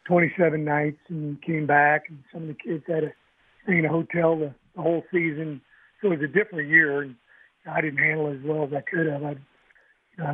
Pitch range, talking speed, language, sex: 155-170 Hz, 250 wpm, English, male